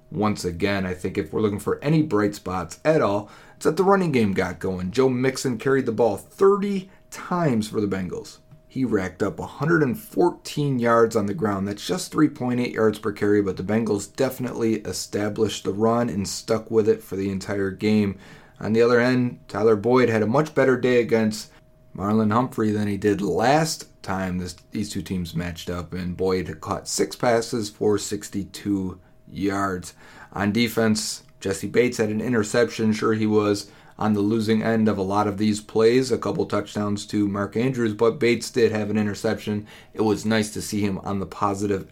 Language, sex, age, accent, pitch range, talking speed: English, male, 30-49, American, 100-120 Hz, 190 wpm